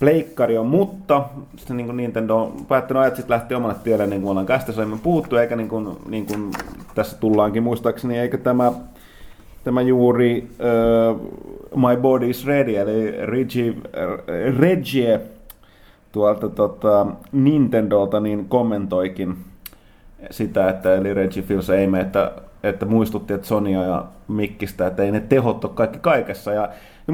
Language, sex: Finnish, male